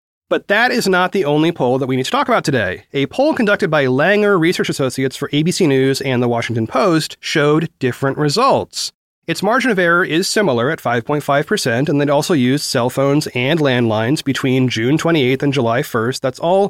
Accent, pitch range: American, 135-190 Hz